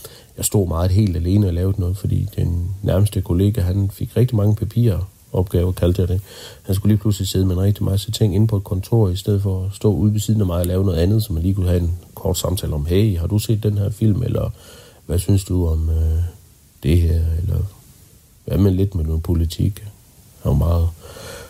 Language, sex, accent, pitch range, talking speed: Danish, male, native, 90-110 Hz, 230 wpm